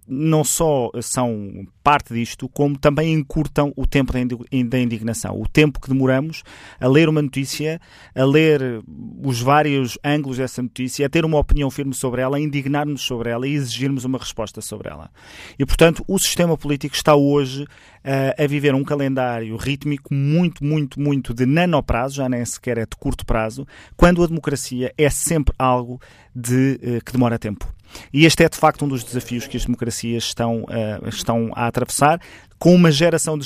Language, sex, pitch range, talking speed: Portuguese, male, 120-150 Hz, 170 wpm